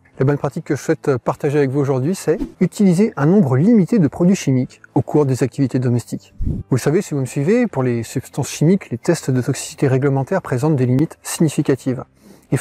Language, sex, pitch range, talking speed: French, male, 130-170 Hz, 210 wpm